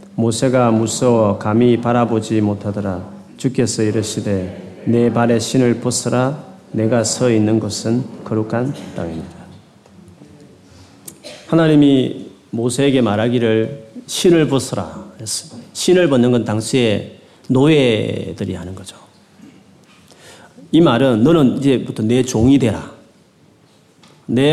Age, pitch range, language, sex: 40-59, 105-130 Hz, Korean, male